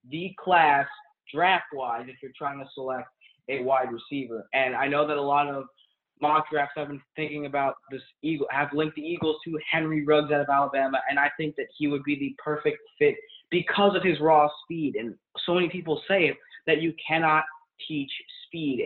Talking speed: 200 wpm